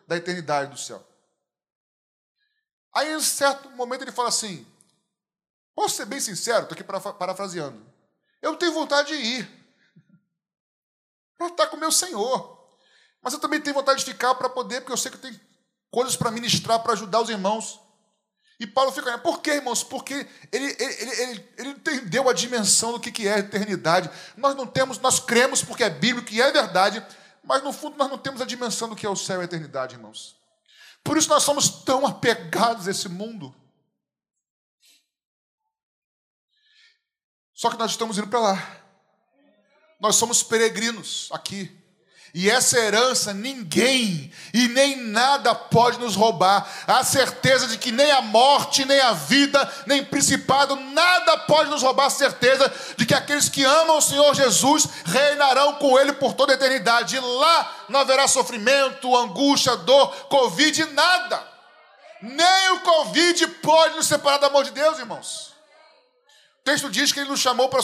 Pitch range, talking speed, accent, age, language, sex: 220-285 Hz, 165 wpm, Brazilian, 20-39, Portuguese, male